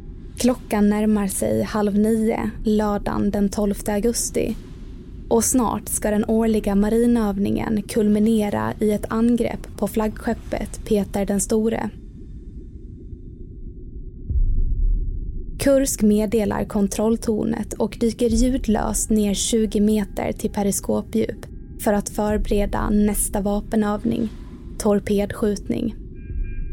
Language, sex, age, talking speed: Swedish, female, 20-39, 90 wpm